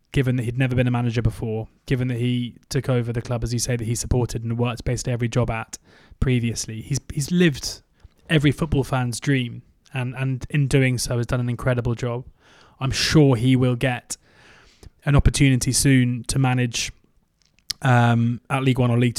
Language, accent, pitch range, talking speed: English, British, 120-135 Hz, 190 wpm